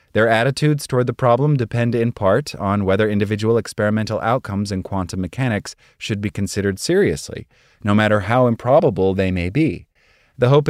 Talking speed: 165 wpm